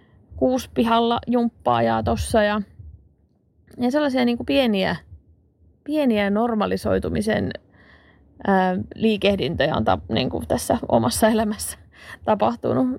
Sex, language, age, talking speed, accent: female, Finnish, 20-39, 90 wpm, native